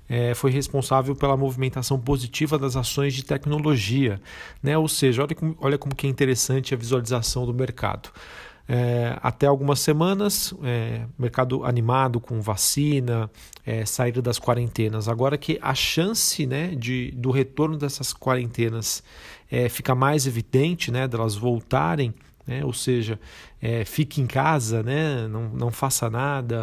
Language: Portuguese